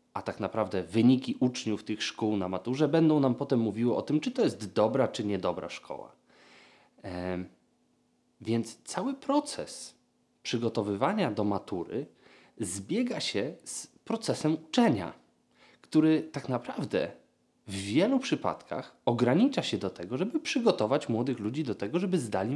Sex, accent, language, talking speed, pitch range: male, native, Polish, 135 wpm, 115-175 Hz